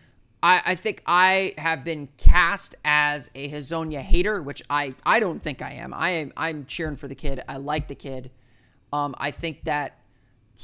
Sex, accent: male, American